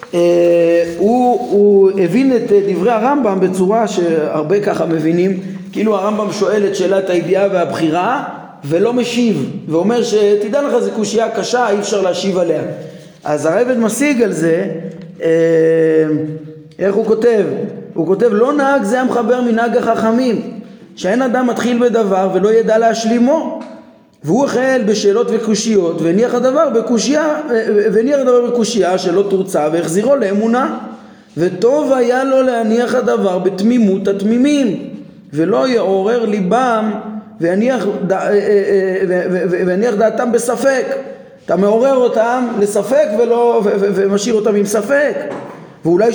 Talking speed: 115 wpm